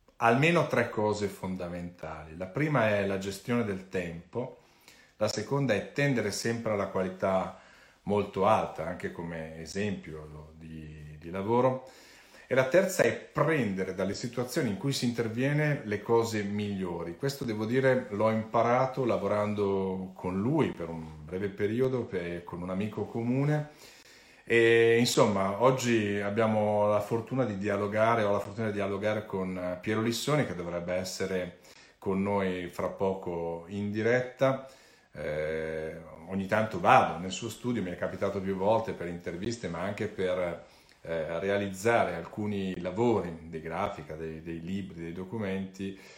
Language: Italian